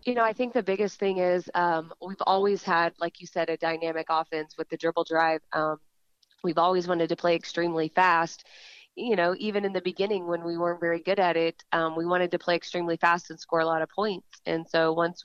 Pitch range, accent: 165-180 Hz, American